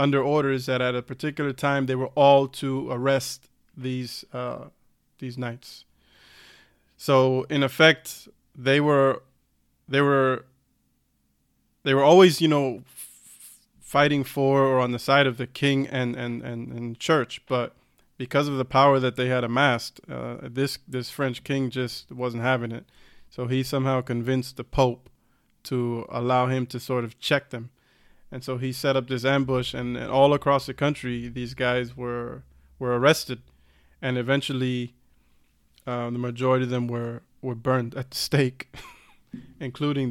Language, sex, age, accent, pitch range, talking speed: English, male, 20-39, American, 120-135 Hz, 160 wpm